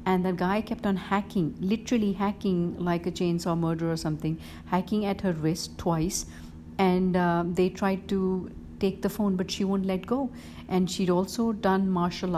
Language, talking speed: English, 180 wpm